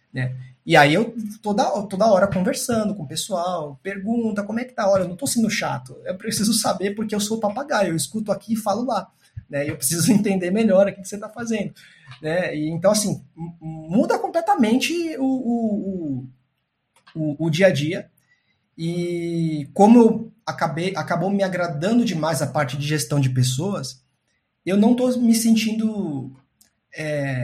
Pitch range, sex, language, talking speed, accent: 140-205 Hz, male, Portuguese, 170 wpm, Brazilian